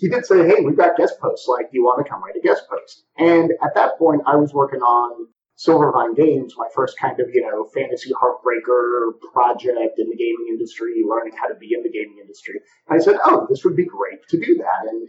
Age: 30-49